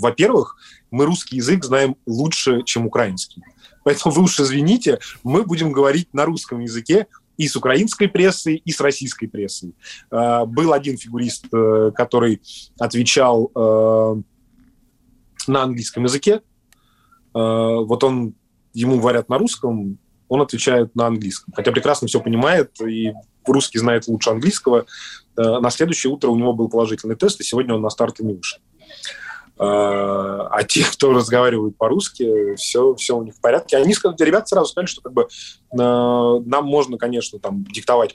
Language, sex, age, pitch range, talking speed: Russian, male, 20-39, 110-135 Hz, 140 wpm